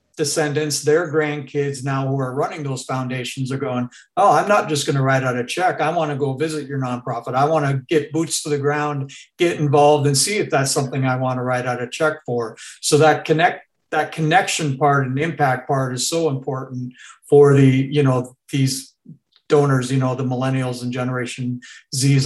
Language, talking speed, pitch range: English, 205 wpm, 125-150 Hz